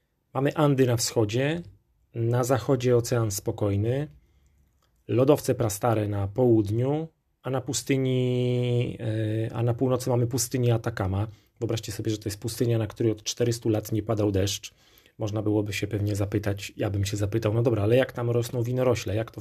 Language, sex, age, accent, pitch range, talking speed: Polish, male, 30-49, native, 105-120 Hz, 165 wpm